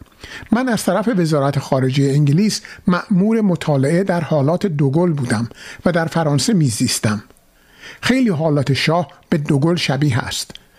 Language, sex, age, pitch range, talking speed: Persian, male, 50-69, 145-205 Hz, 130 wpm